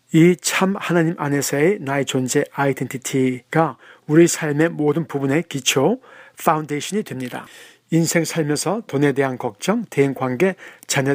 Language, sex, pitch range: Korean, male, 140-165 Hz